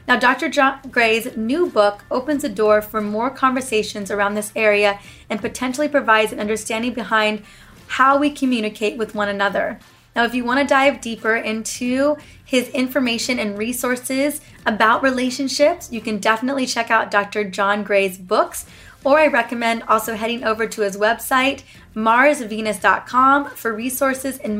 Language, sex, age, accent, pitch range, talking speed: English, female, 20-39, American, 215-270 Hz, 155 wpm